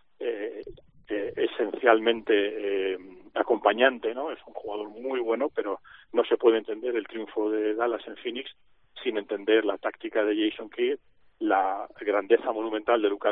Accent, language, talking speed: Spanish, Spanish, 155 wpm